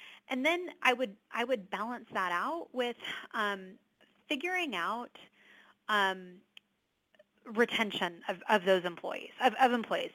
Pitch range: 190-245 Hz